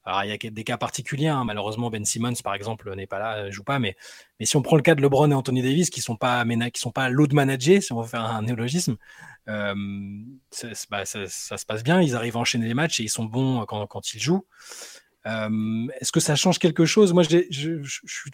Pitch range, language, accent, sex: 115-155 Hz, French, French, male